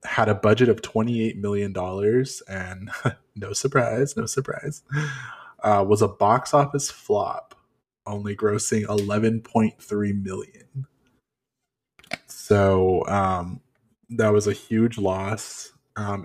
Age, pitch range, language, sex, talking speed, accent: 20-39, 100-120 Hz, English, male, 110 wpm, American